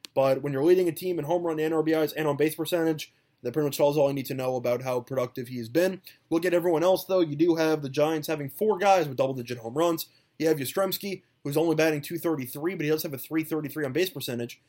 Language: English